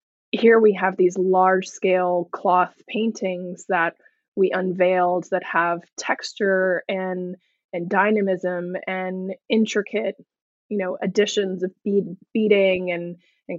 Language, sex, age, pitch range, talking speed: English, female, 20-39, 180-210 Hz, 120 wpm